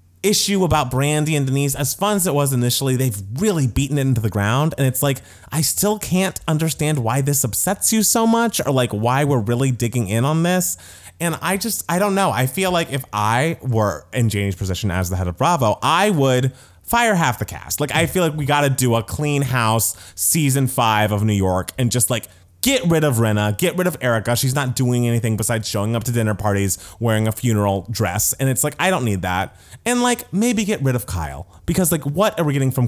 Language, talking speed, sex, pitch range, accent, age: English, 235 wpm, male, 100-150 Hz, American, 20-39